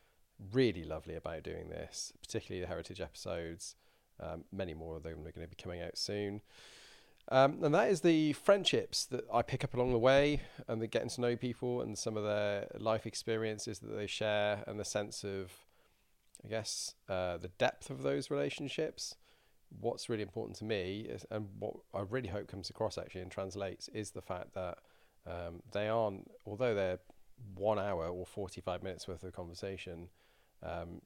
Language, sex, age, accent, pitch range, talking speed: English, male, 40-59, British, 90-110 Hz, 185 wpm